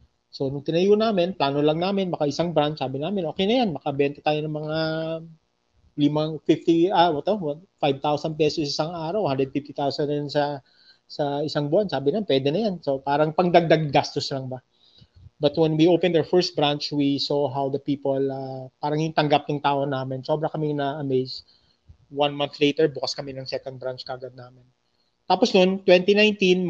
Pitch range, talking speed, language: 140-160 Hz, 180 wpm, Filipino